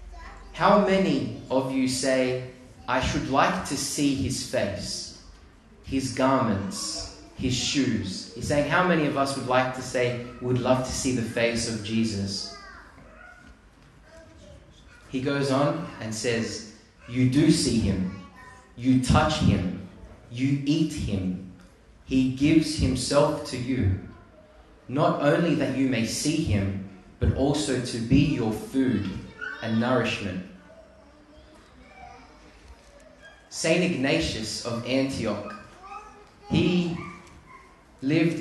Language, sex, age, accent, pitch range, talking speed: English, male, 20-39, Australian, 115-150 Hz, 115 wpm